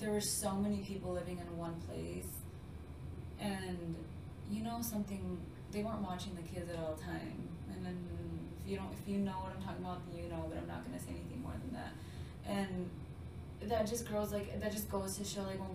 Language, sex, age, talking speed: English, female, 20-39, 220 wpm